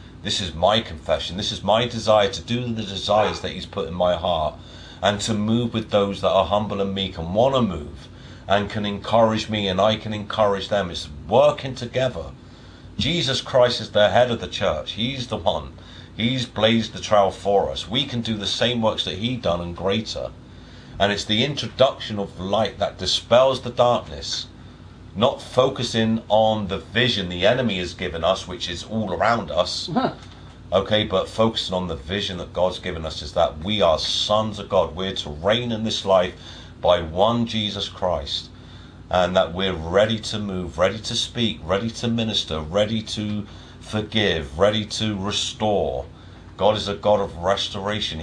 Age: 40-59